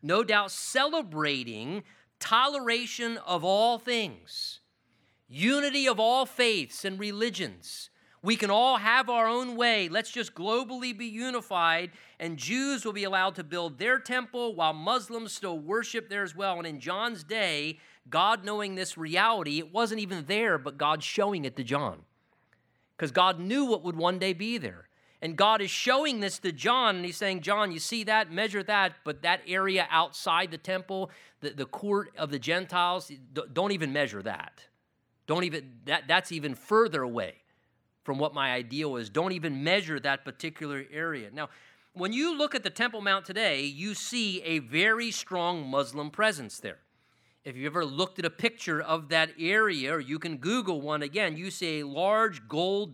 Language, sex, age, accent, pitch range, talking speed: English, male, 40-59, American, 160-220 Hz, 175 wpm